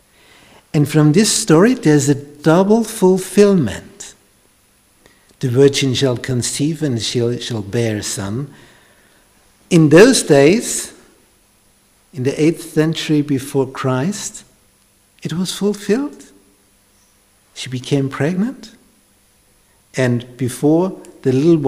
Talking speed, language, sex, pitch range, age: 100 wpm, English, male, 115-165 Hz, 60-79